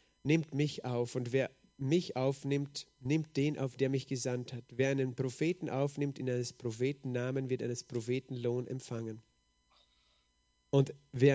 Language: German